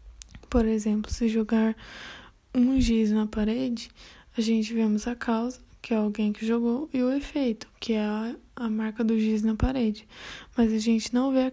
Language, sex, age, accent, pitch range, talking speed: Portuguese, female, 10-29, Brazilian, 225-245 Hz, 180 wpm